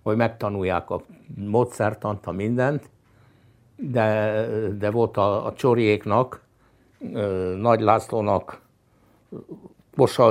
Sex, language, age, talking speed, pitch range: male, Hungarian, 60-79, 85 wpm, 100-120 Hz